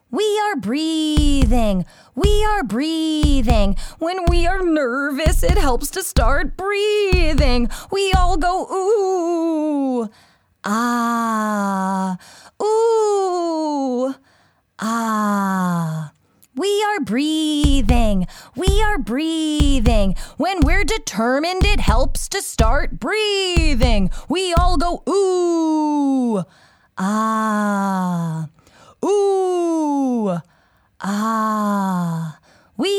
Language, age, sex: English, 20-39, female